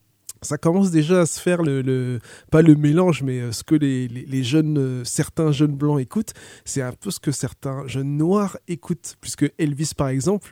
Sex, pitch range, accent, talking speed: male, 135-170 Hz, French, 200 wpm